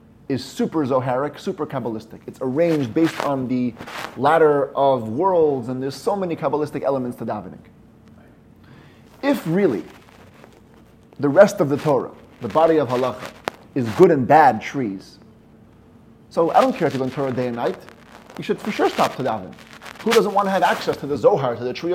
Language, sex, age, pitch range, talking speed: English, male, 30-49, 120-155 Hz, 185 wpm